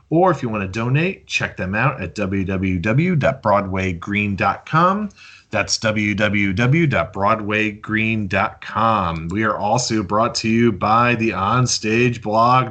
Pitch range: 105-145 Hz